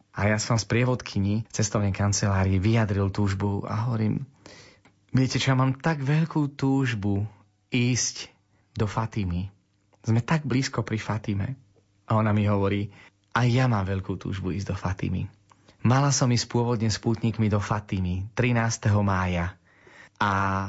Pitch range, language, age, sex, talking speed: 100-120 Hz, Slovak, 30-49, male, 140 wpm